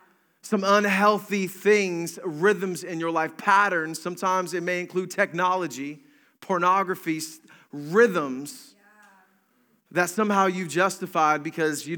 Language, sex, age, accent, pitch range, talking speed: English, male, 30-49, American, 170-225 Hz, 105 wpm